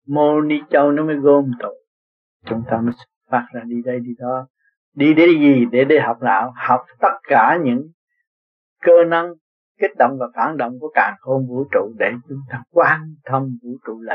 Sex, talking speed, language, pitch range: male, 200 wpm, Vietnamese, 130-170 Hz